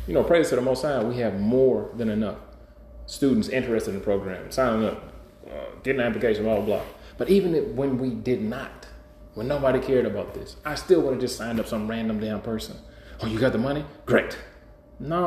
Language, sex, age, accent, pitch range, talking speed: English, male, 30-49, American, 110-140 Hz, 210 wpm